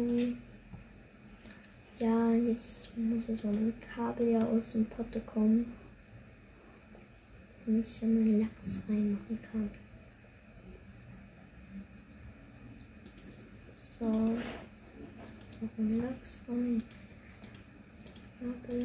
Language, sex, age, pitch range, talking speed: German, female, 20-39, 220-245 Hz, 85 wpm